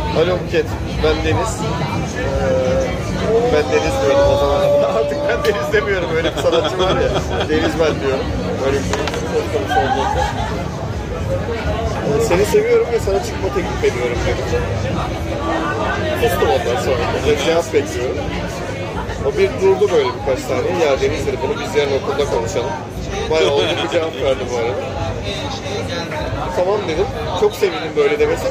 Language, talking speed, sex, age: Turkish, 145 wpm, male, 30-49